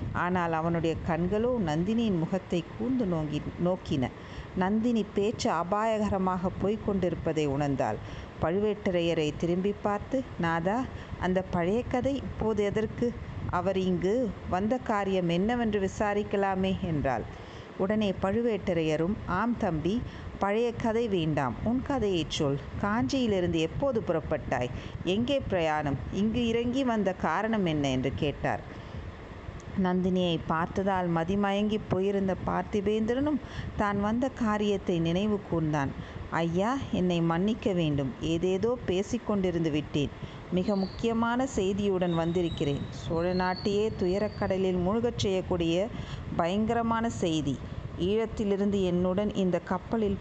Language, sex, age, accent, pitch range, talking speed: Tamil, female, 50-69, native, 165-215 Hz, 95 wpm